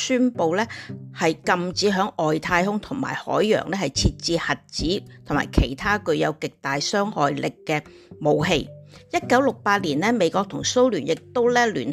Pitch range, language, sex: 155-210 Hz, Chinese, female